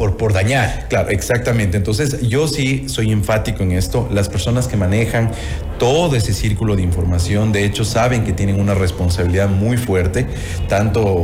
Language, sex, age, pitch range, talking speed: Spanish, male, 40-59, 95-115 Hz, 165 wpm